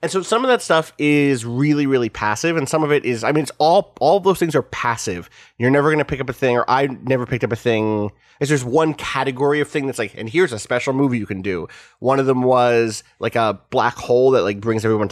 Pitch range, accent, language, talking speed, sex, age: 115-145 Hz, American, English, 275 wpm, male, 30-49